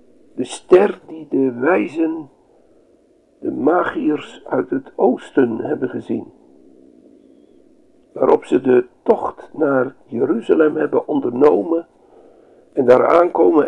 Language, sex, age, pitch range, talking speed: Dutch, male, 60-79, 295-375 Hz, 100 wpm